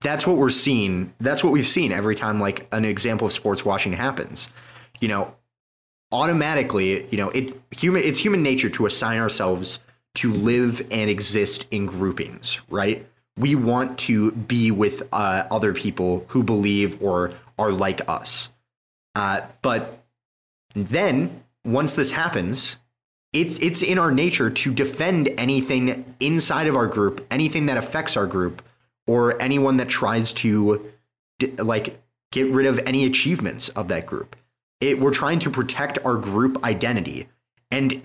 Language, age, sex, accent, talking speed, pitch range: English, 30-49, male, American, 150 wpm, 105-135 Hz